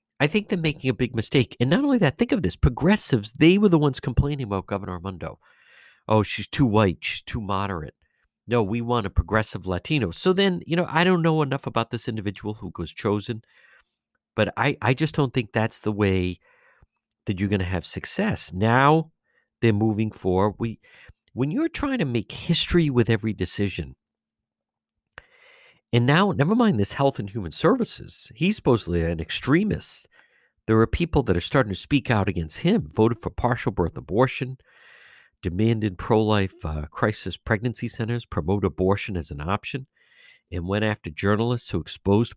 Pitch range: 95-130 Hz